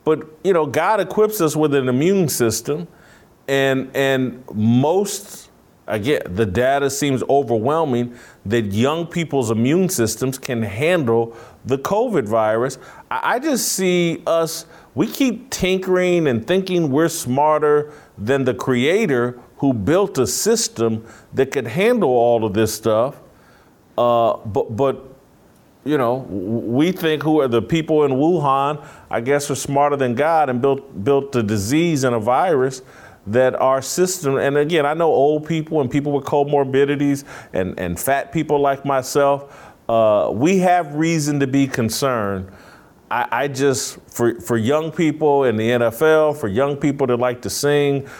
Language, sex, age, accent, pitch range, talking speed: English, male, 50-69, American, 120-160 Hz, 155 wpm